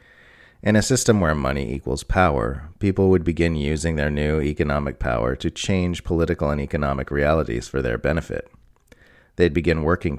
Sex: male